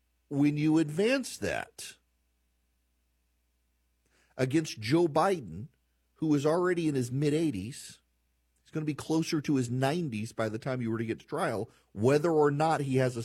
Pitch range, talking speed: 105-155 Hz, 165 wpm